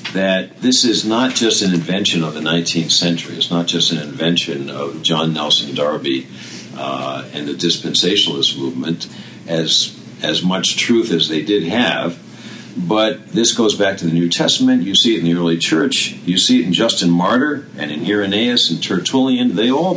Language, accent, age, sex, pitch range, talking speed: English, American, 50-69, male, 85-110 Hz, 185 wpm